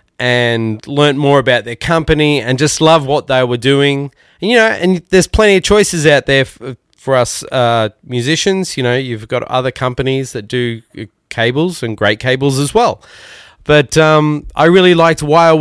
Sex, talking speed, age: male, 185 wpm, 20-39